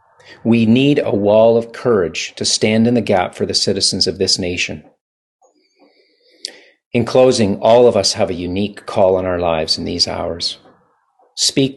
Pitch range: 95-125 Hz